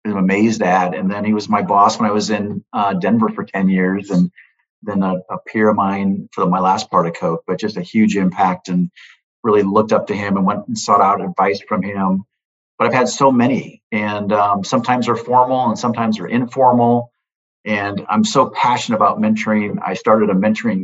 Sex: male